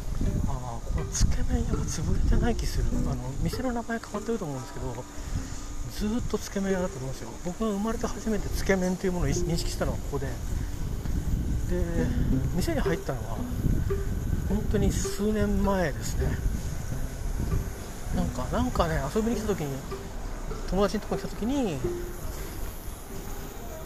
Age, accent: 40-59, native